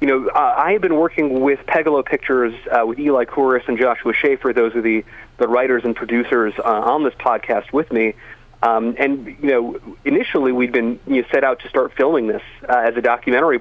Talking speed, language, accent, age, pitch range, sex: 210 wpm, English, American, 40-59, 115-135 Hz, male